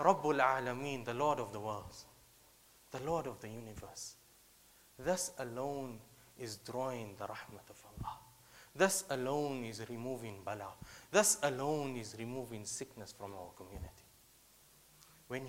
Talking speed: 130 wpm